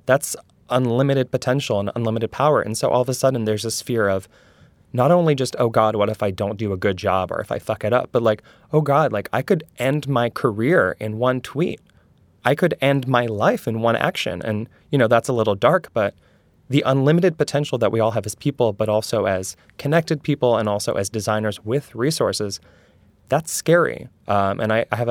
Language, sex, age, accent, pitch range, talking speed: English, male, 20-39, American, 105-130 Hz, 215 wpm